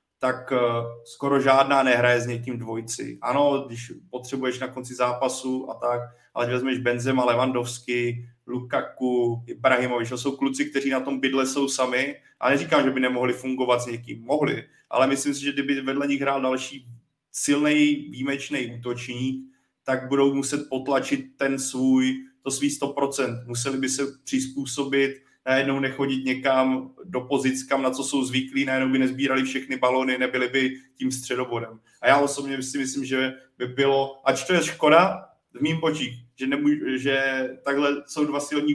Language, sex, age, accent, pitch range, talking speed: Czech, male, 30-49, native, 125-140 Hz, 160 wpm